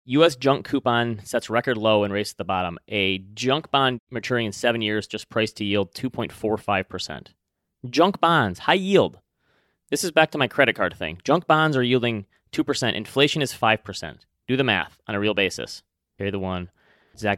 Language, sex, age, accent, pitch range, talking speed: English, male, 30-49, American, 110-150 Hz, 185 wpm